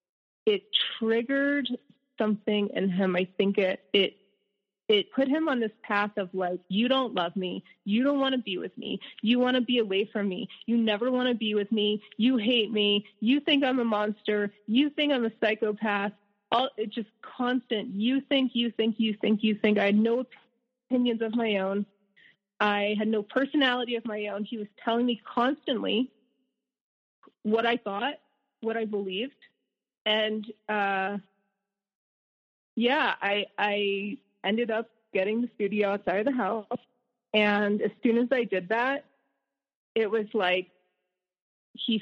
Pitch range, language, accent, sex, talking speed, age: 200-245 Hz, English, American, female, 165 wpm, 30-49